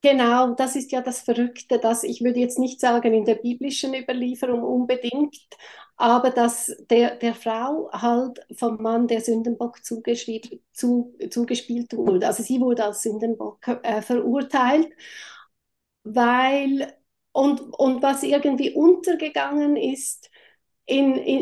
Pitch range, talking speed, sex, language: 240-295 Hz, 125 wpm, female, German